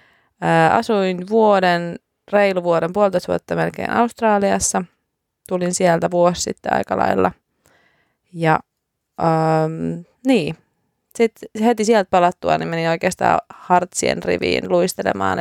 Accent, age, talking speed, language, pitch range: native, 20-39, 105 wpm, Finnish, 170-205 Hz